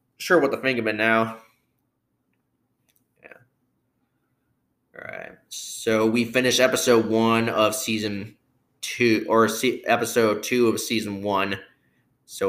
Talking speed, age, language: 115 wpm, 20-39, English